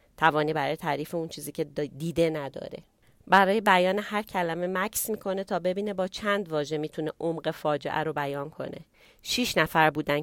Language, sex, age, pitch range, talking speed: Persian, female, 30-49, 150-185 Hz, 165 wpm